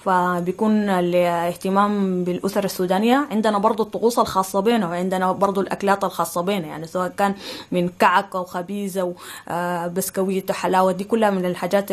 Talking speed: 130 wpm